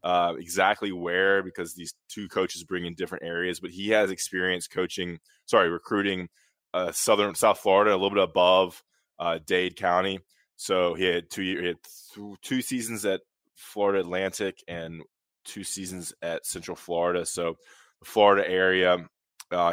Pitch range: 85-90 Hz